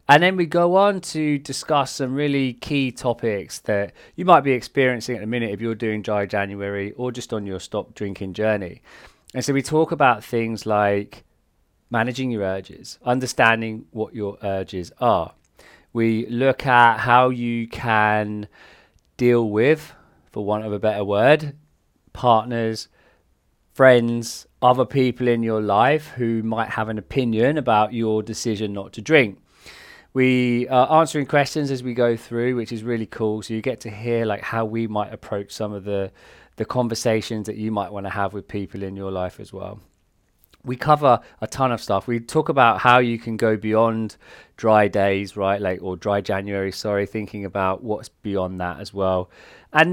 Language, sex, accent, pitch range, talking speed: English, male, British, 105-130 Hz, 175 wpm